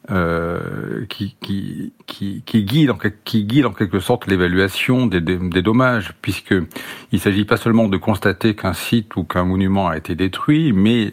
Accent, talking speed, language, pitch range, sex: French, 175 wpm, French, 95-115 Hz, male